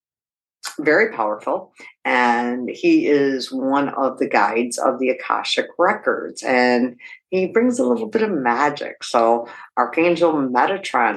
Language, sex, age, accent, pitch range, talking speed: English, female, 50-69, American, 120-155 Hz, 130 wpm